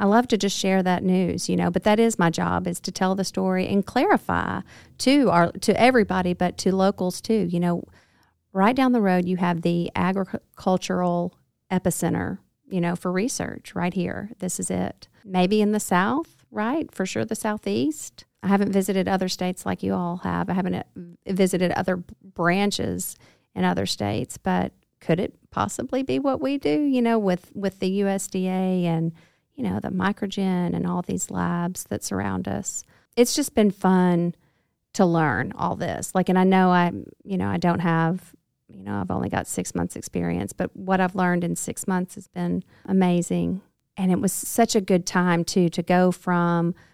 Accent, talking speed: American, 190 wpm